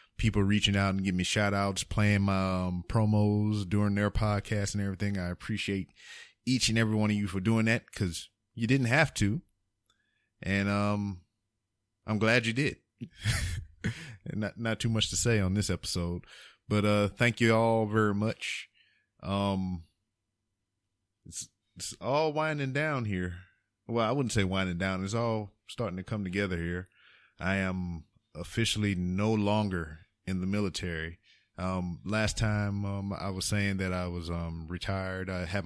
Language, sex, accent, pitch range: English, male, American, 95-110 Hz